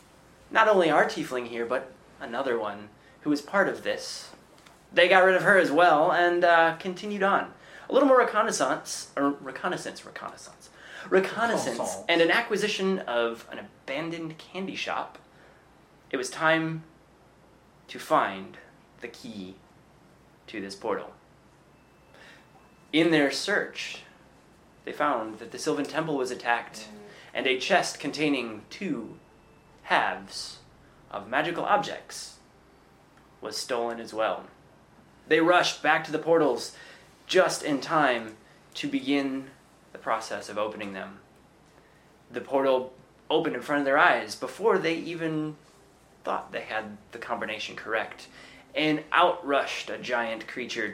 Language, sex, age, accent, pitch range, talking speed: English, male, 20-39, American, 115-170 Hz, 135 wpm